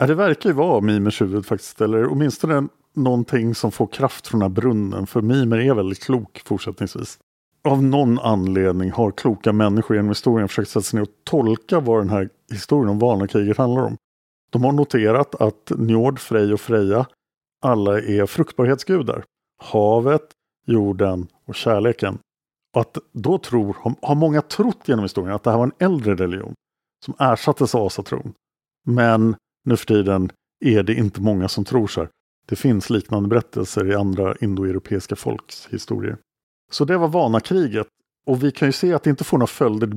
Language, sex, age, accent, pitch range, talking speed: Swedish, male, 50-69, Norwegian, 105-140 Hz, 175 wpm